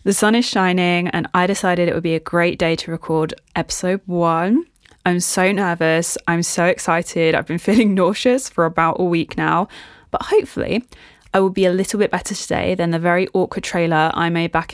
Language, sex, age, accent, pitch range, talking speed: English, female, 20-39, British, 165-190 Hz, 205 wpm